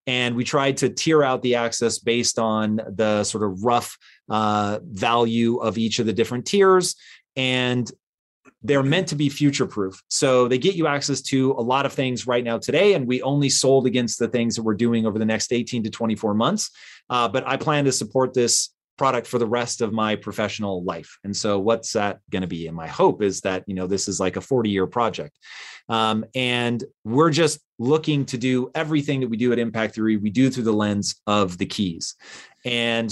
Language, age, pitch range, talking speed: English, 30-49, 110-130 Hz, 210 wpm